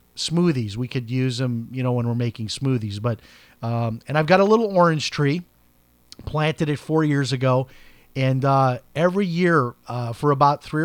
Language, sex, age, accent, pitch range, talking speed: English, male, 40-59, American, 130-170 Hz, 185 wpm